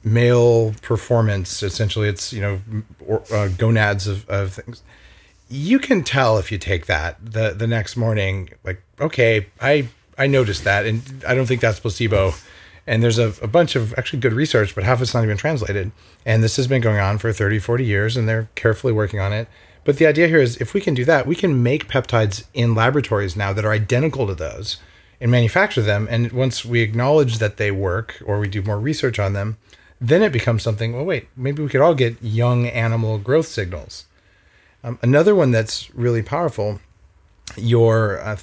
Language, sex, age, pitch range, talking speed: English, male, 30-49, 100-120 Hz, 200 wpm